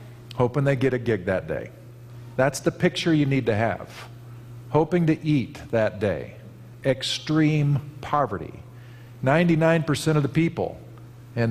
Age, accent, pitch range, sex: 50-69, American, 120-160 Hz, male